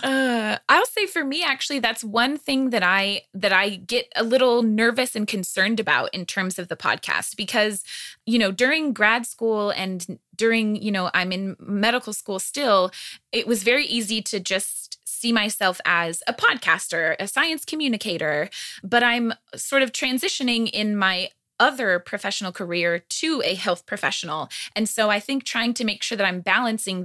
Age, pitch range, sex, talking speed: 20-39, 180-235 Hz, female, 175 wpm